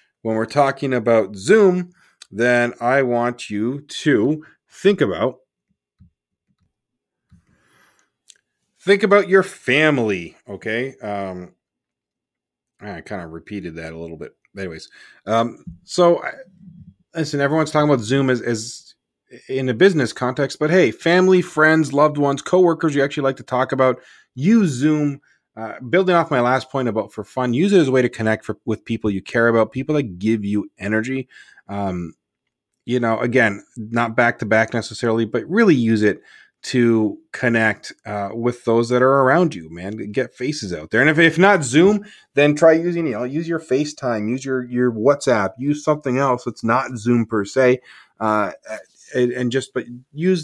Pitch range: 110-150 Hz